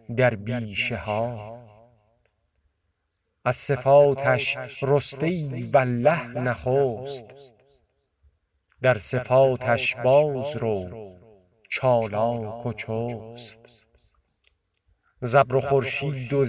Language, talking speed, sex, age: Persian, 65 wpm, male, 50-69